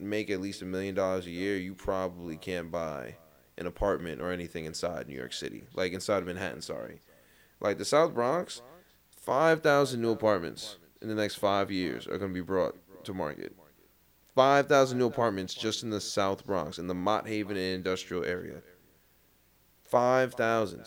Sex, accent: male, American